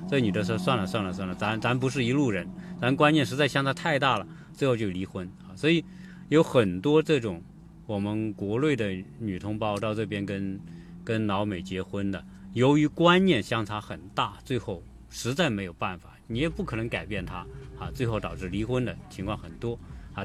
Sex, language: male, Chinese